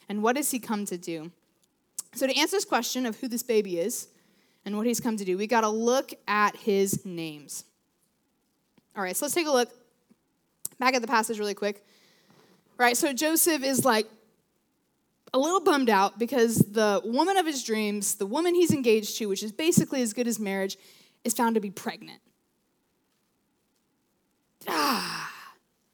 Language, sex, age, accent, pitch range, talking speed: English, female, 20-39, American, 205-275 Hz, 180 wpm